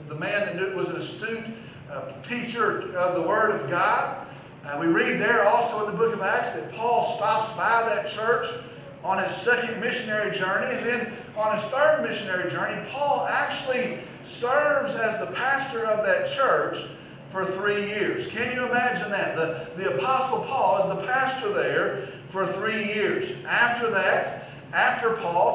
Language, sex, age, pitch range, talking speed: English, male, 40-59, 195-260 Hz, 170 wpm